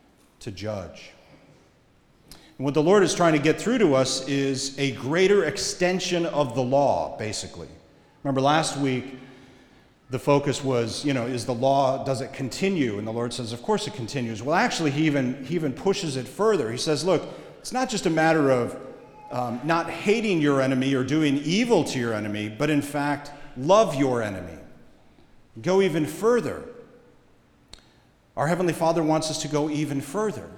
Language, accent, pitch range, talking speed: English, American, 120-160 Hz, 175 wpm